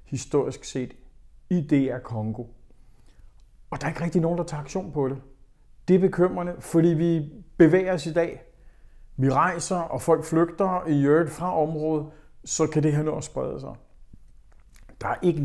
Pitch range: 125-155 Hz